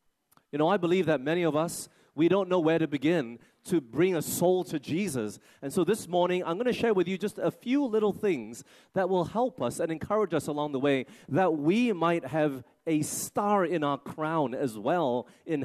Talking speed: 220 wpm